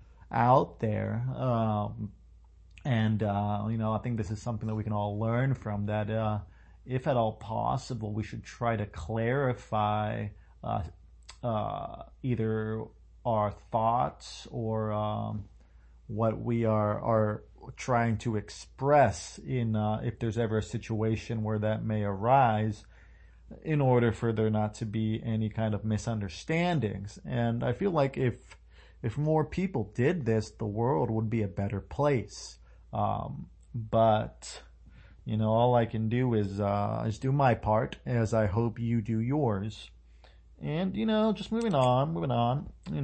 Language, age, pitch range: English, 40-59, 105-125 Hz